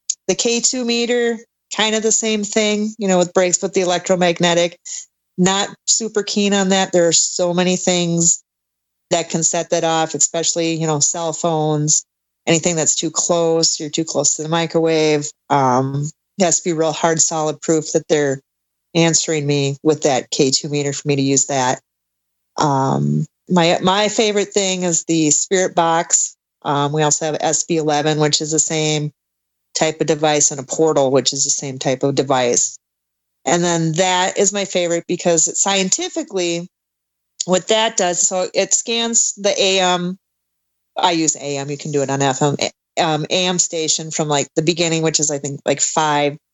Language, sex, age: English, female, 30-49